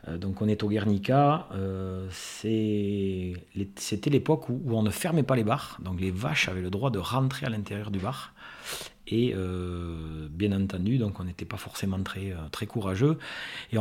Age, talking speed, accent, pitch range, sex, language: 30-49, 190 wpm, French, 95-125 Hz, male, French